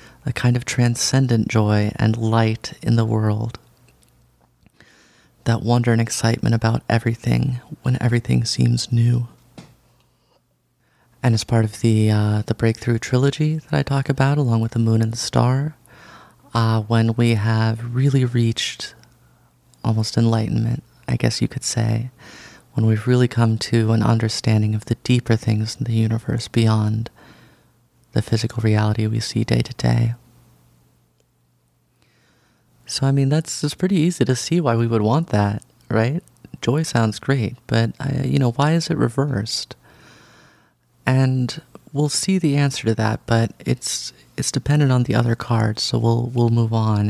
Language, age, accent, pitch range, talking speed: English, 30-49, American, 110-130 Hz, 155 wpm